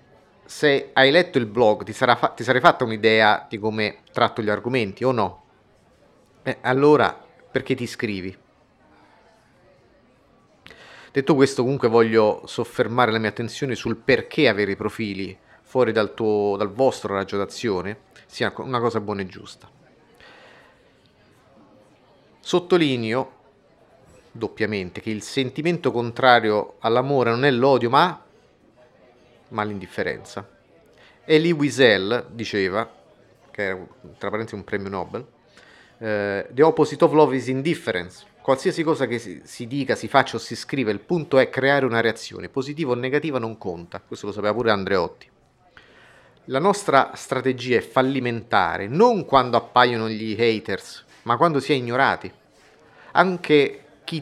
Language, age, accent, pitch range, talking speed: Italian, 30-49, native, 110-135 Hz, 135 wpm